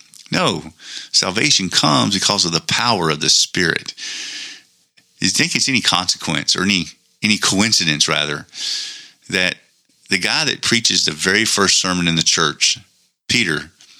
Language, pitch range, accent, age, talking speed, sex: English, 85-100 Hz, American, 40-59, 145 wpm, male